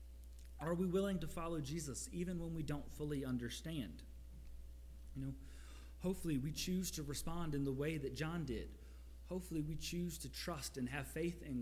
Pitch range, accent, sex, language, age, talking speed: 110-165 Hz, American, male, English, 30-49, 175 wpm